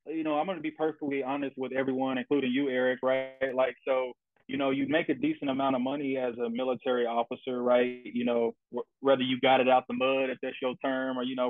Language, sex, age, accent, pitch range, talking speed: English, male, 20-39, American, 125-145 Hz, 245 wpm